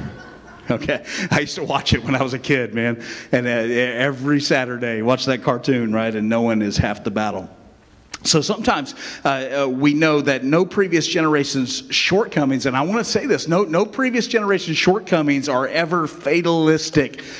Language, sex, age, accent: English, male, 50-69, American